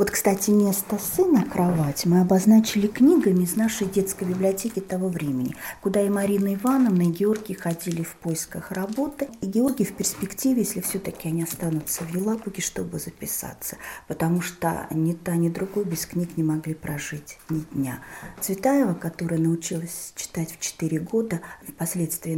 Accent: native